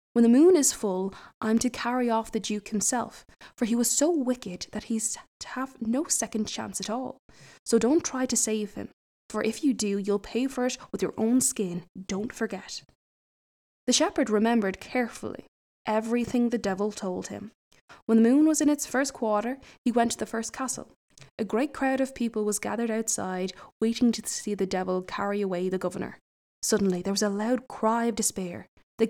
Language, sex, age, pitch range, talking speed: English, female, 10-29, 205-245 Hz, 195 wpm